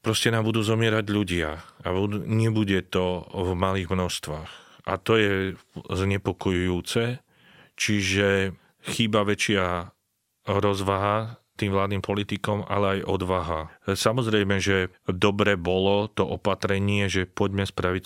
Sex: male